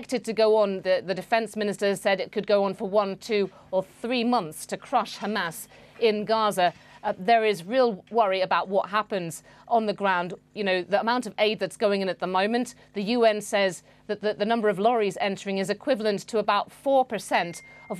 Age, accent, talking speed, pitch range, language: 40-59, British, 210 wpm, 185-225 Hz, English